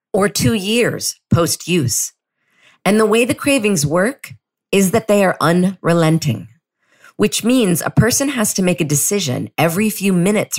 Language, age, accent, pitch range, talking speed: English, 40-59, American, 130-175 Hz, 155 wpm